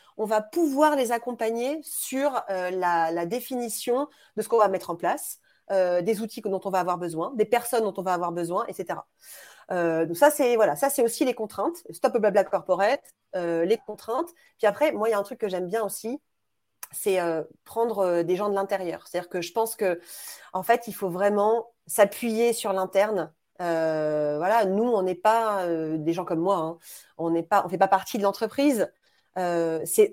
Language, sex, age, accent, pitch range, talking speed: French, female, 30-49, French, 185-240 Hz, 210 wpm